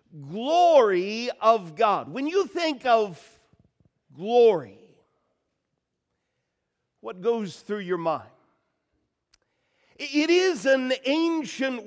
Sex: male